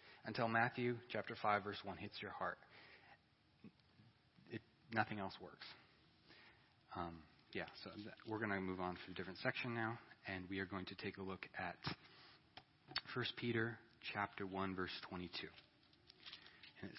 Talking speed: 150 wpm